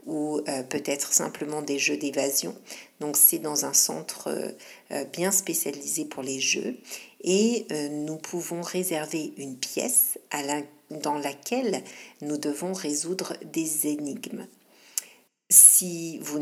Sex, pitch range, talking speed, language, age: female, 145-180 Hz, 115 wpm, French, 60-79